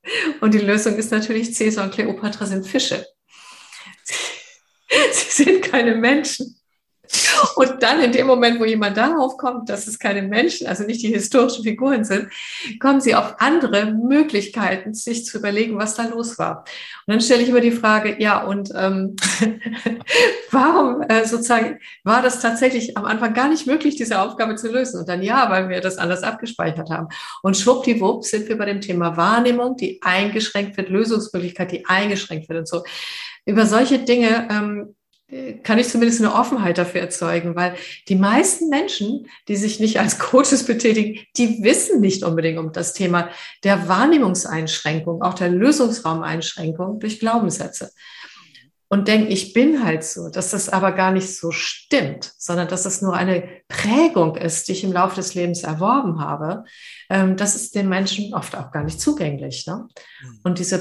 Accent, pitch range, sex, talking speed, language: German, 185-240 Hz, female, 170 wpm, German